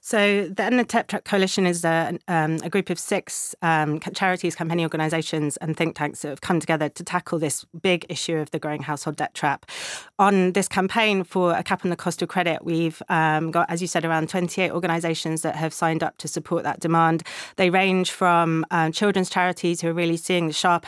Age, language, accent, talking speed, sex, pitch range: 30-49, English, British, 215 wpm, female, 160-180 Hz